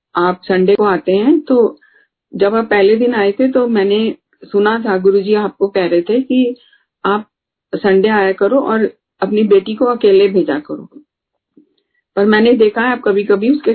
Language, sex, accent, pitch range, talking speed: Hindi, female, native, 190-240 Hz, 180 wpm